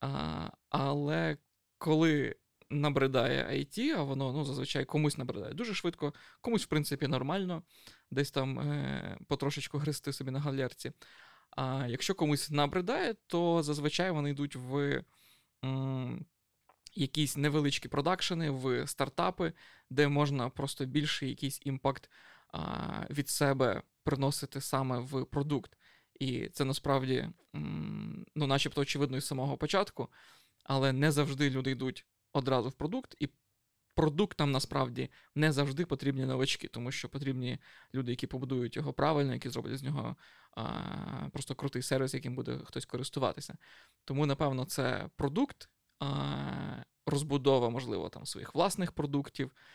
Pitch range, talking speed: 130-150 Hz, 130 wpm